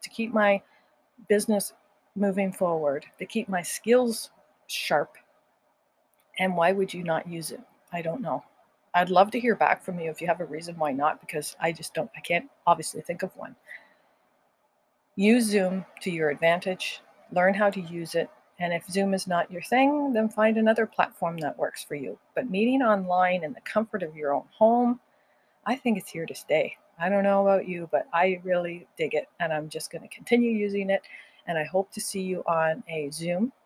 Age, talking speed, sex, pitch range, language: 40-59, 200 wpm, female, 170-225 Hz, English